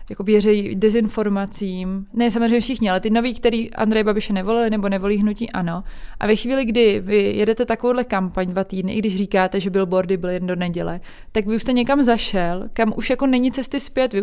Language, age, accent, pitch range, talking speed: Czech, 20-39, native, 205-230 Hz, 210 wpm